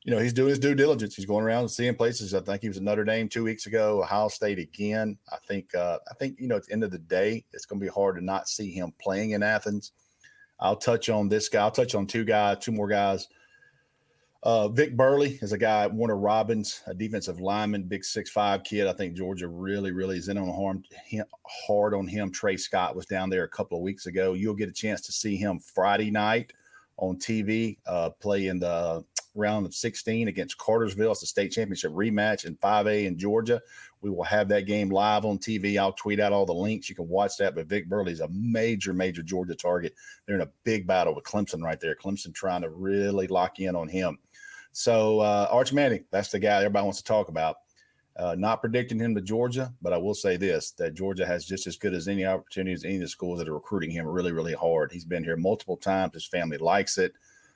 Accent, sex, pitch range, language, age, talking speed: American, male, 95-110 Hz, English, 40-59, 235 wpm